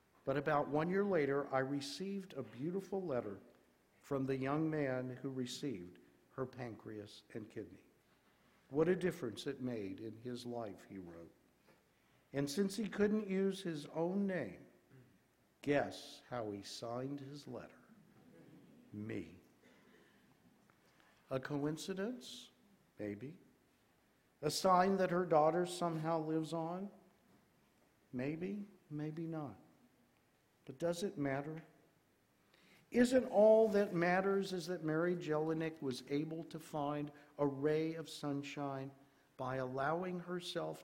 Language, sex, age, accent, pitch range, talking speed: English, male, 60-79, American, 125-175 Hz, 120 wpm